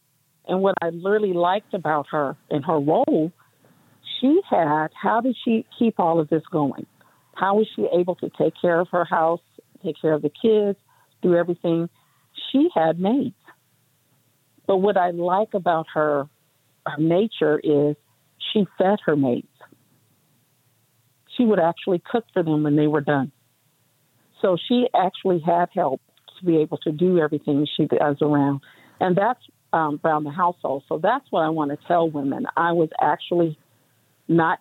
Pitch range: 145-175 Hz